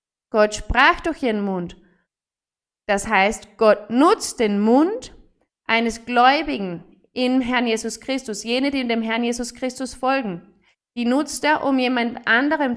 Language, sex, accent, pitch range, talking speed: German, female, German, 225-285 Hz, 140 wpm